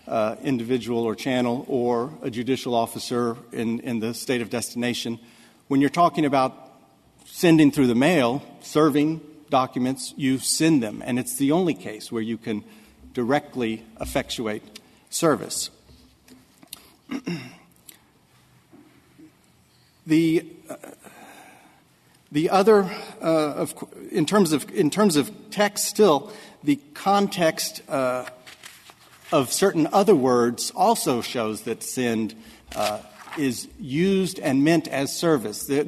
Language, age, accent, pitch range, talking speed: English, 50-69, American, 120-150 Hz, 115 wpm